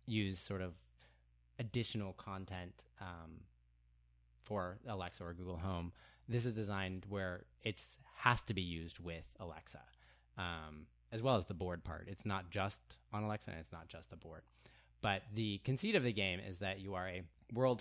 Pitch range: 85-105 Hz